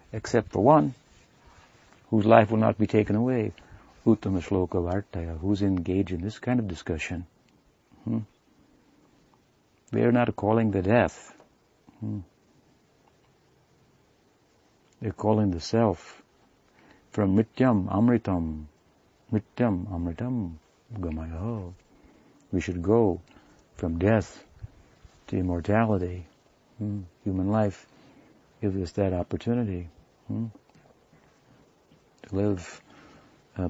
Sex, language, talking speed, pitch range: male, English, 100 wpm, 90-115 Hz